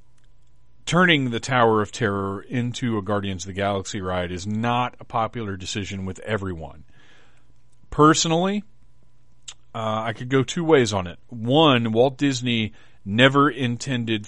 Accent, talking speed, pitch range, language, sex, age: American, 140 wpm, 100-125 Hz, English, male, 40-59